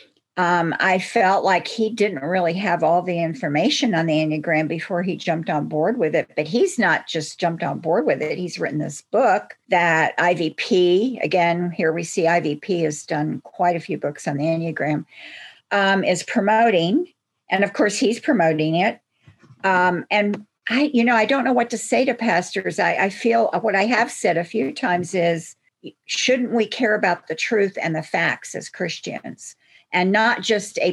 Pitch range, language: 165-210 Hz, English